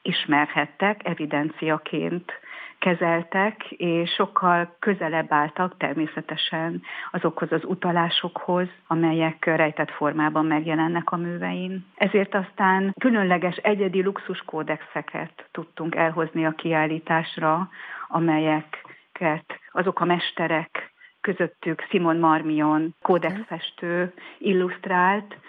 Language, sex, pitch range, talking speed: Hungarian, female, 155-180 Hz, 85 wpm